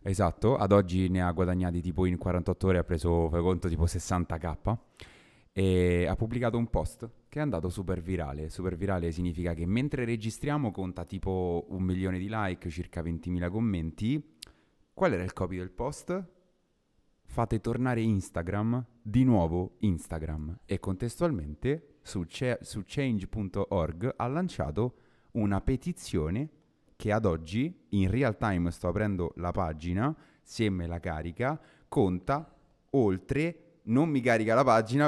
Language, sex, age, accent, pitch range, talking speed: Italian, male, 30-49, native, 90-125 Hz, 145 wpm